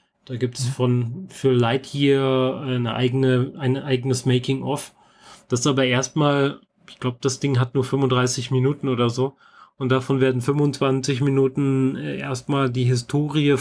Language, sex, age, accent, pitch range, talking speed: German, male, 30-49, German, 125-160 Hz, 150 wpm